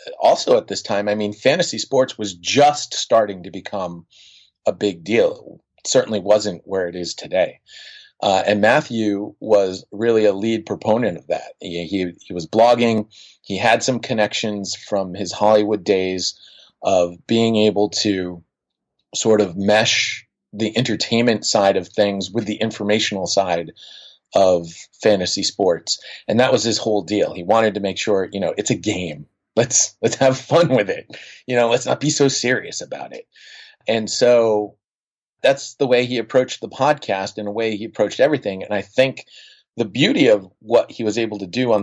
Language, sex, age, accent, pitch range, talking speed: English, male, 30-49, American, 100-120 Hz, 180 wpm